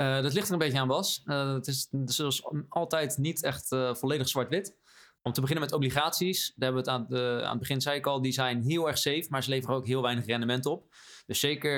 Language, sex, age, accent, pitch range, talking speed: Dutch, male, 20-39, Dutch, 120-140 Hz, 255 wpm